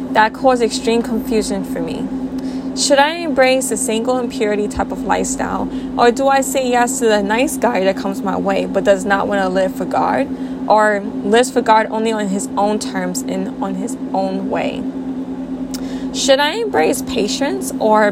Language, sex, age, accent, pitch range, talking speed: English, female, 20-39, American, 220-265 Hz, 180 wpm